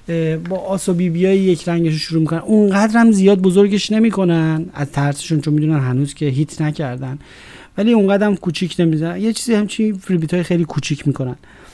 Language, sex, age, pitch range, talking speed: Persian, male, 30-49, 140-180 Hz, 170 wpm